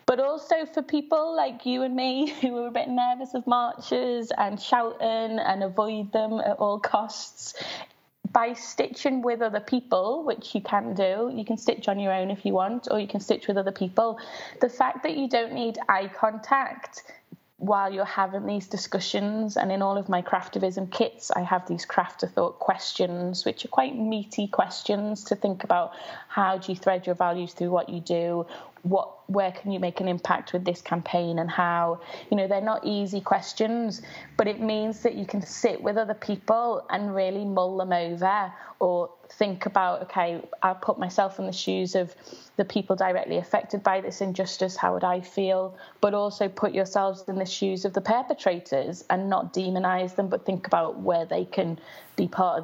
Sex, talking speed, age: female, 195 wpm, 20-39